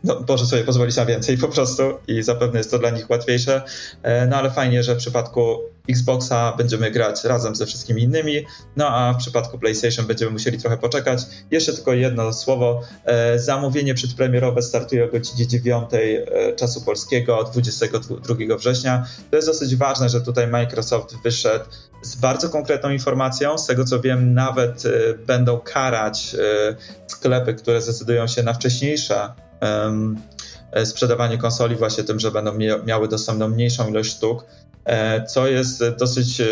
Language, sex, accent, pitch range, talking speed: Polish, male, native, 115-130 Hz, 145 wpm